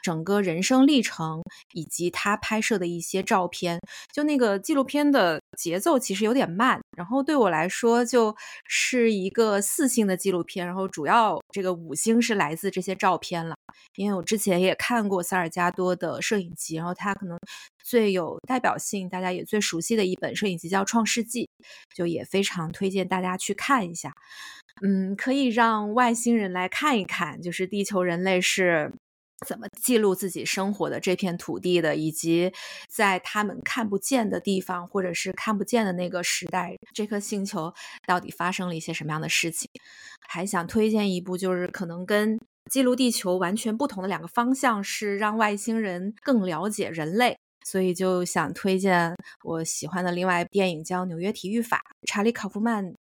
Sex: female